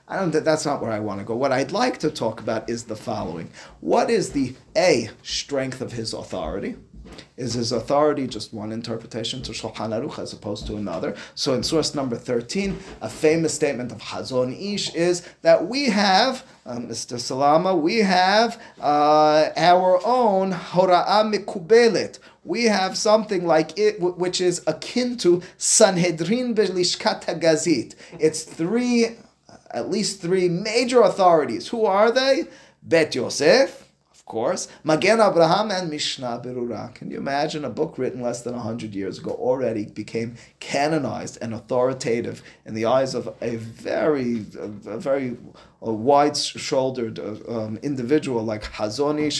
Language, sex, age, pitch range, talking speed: English, male, 30-49, 115-185 Hz, 155 wpm